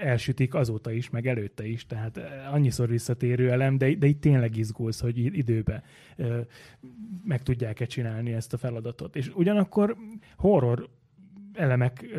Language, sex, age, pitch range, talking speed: Hungarian, male, 30-49, 120-145 Hz, 140 wpm